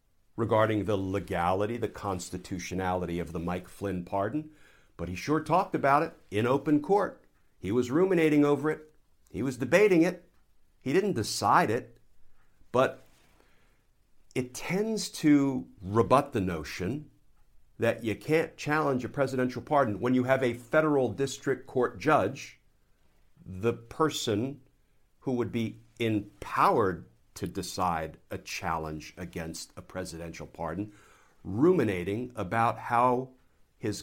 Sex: male